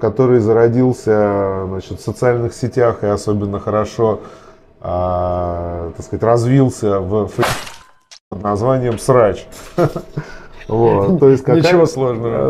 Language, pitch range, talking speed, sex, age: Russian, 100-125 Hz, 90 wpm, male, 20-39